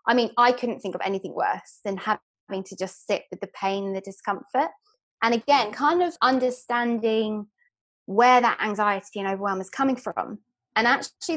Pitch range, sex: 200-255 Hz, female